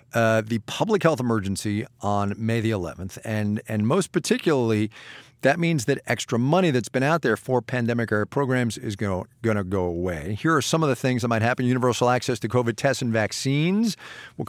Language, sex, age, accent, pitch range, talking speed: English, male, 50-69, American, 110-150 Hz, 195 wpm